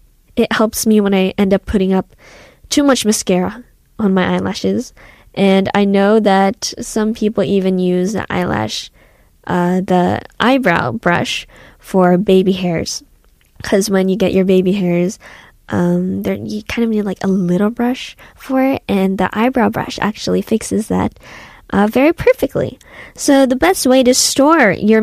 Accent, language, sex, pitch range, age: American, Korean, female, 190-245 Hz, 10-29